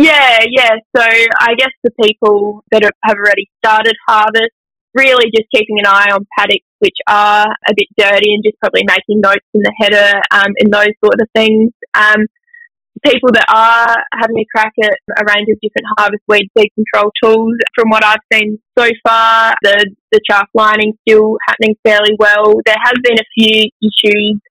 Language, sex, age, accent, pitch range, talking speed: English, female, 10-29, Australian, 205-225 Hz, 185 wpm